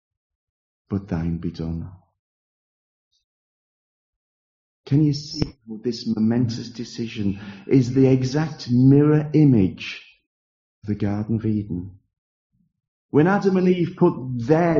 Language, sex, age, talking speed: English, male, 40-59, 110 wpm